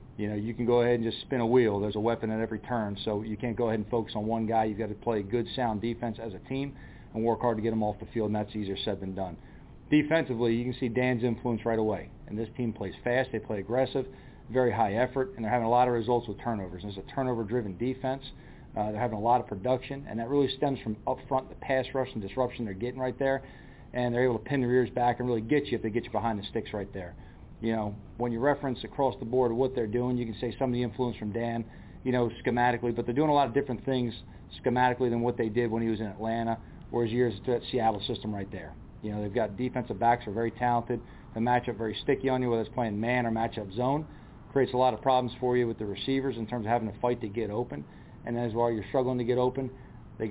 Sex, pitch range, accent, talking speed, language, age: male, 110-125 Hz, American, 270 wpm, English, 40-59